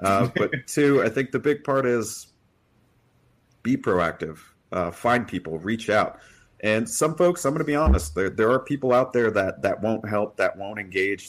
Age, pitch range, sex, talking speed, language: 40-59, 95-125 Hz, male, 195 wpm, English